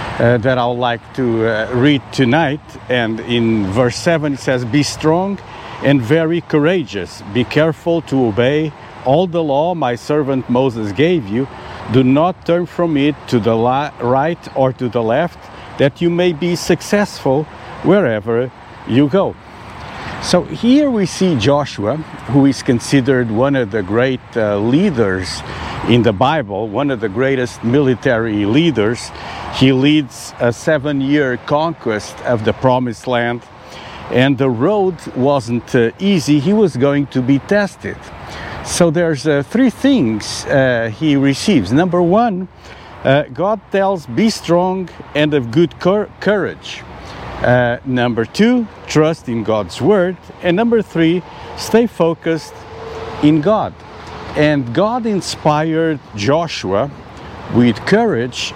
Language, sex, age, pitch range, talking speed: English, male, 50-69, 120-165 Hz, 140 wpm